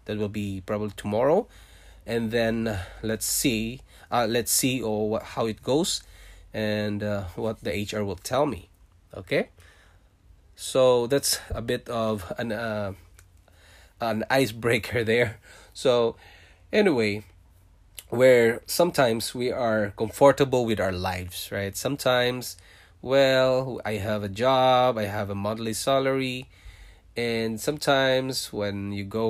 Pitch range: 90-120 Hz